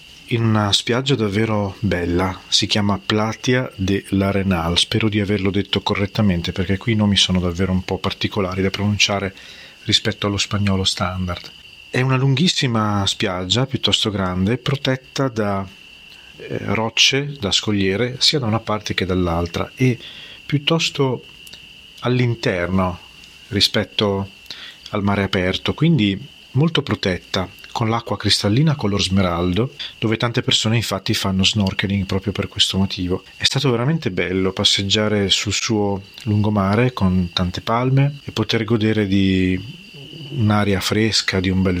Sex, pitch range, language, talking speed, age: male, 95-115 Hz, Italian, 135 wpm, 40-59